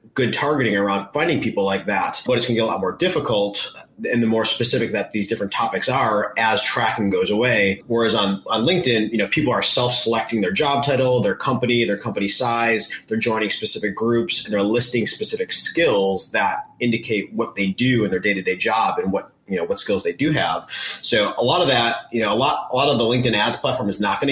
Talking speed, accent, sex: 225 wpm, American, male